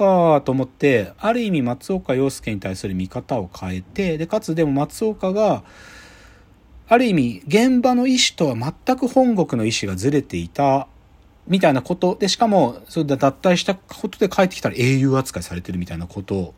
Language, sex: Japanese, male